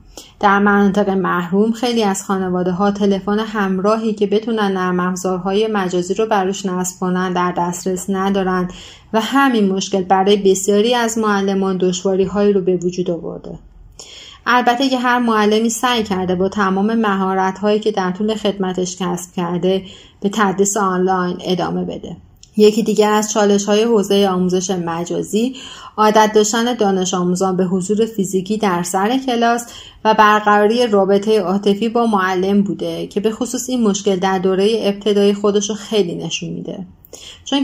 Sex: female